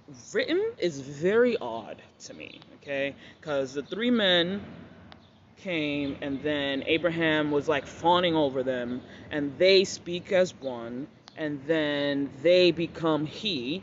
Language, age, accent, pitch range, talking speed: English, 20-39, American, 140-215 Hz, 130 wpm